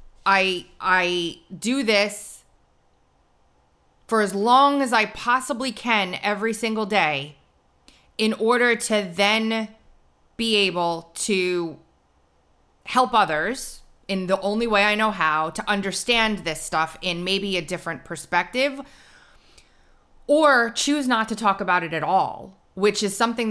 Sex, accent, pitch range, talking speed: female, American, 150-210 Hz, 130 wpm